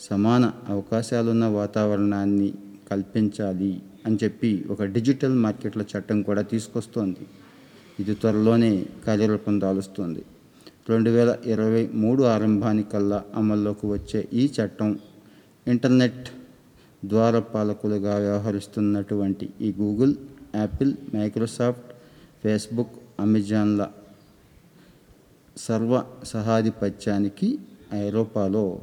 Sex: male